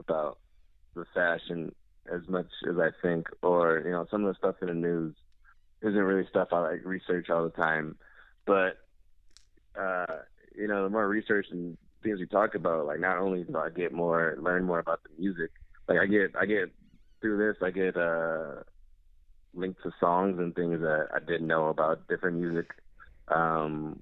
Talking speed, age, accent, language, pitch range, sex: 180 wpm, 20-39, American, English, 80-100 Hz, male